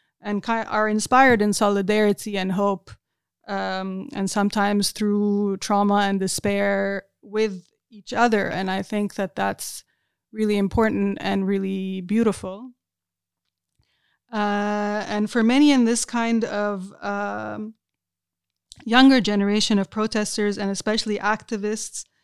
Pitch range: 200-220 Hz